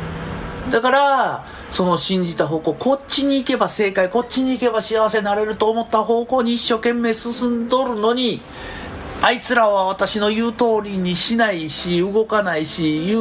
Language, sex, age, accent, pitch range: Japanese, male, 40-59, native, 155-230 Hz